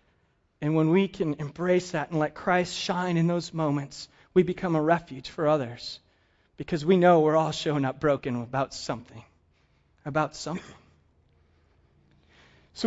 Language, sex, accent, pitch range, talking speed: English, male, American, 175-260 Hz, 150 wpm